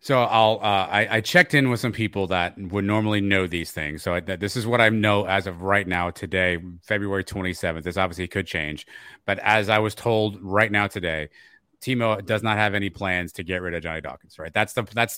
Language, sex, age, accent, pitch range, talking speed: English, male, 30-49, American, 90-110 Hz, 235 wpm